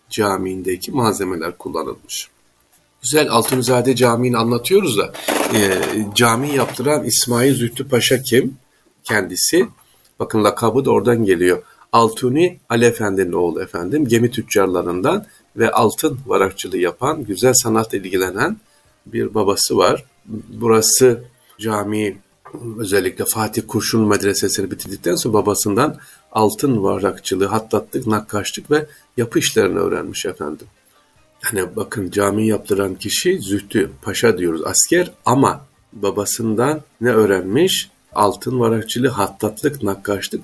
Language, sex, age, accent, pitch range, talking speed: Turkish, male, 50-69, native, 105-135 Hz, 105 wpm